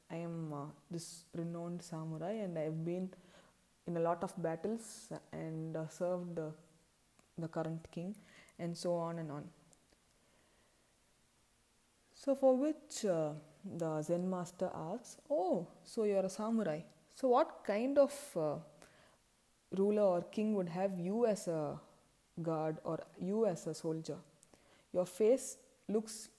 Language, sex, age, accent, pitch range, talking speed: English, female, 20-39, Indian, 170-210 Hz, 145 wpm